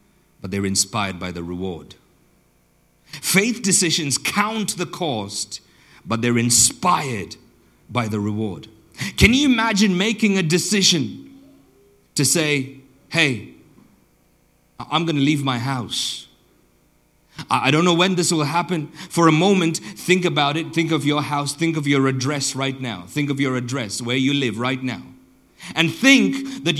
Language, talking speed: English, 150 wpm